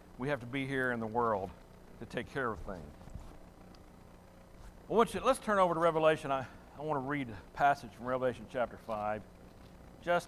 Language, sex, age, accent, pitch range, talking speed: English, male, 60-79, American, 120-195 Hz, 175 wpm